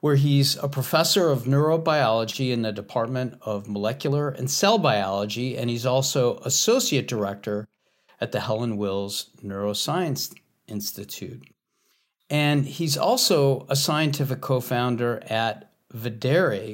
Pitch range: 115-145 Hz